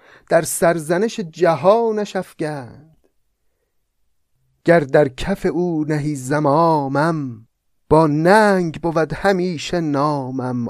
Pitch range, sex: 130-175 Hz, male